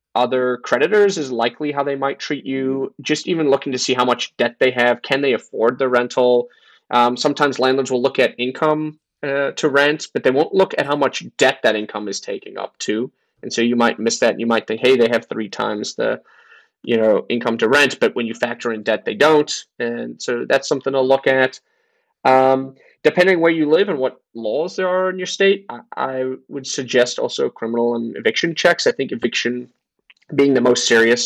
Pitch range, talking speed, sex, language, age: 120-150 Hz, 215 wpm, male, English, 30-49